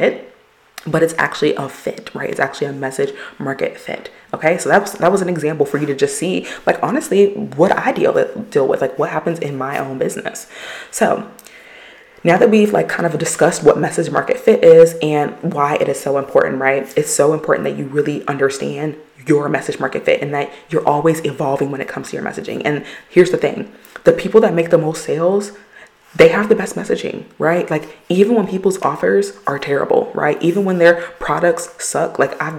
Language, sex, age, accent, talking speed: English, female, 20-39, American, 210 wpm